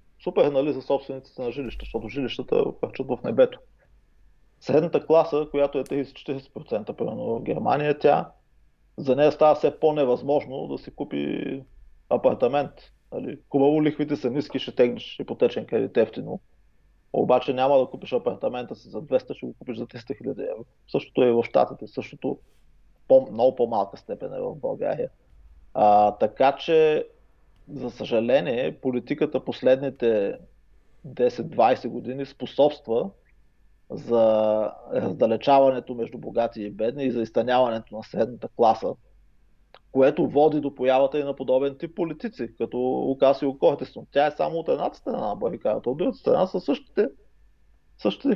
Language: English